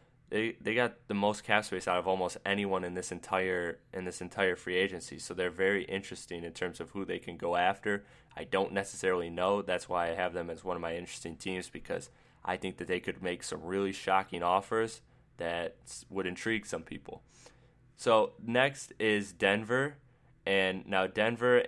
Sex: male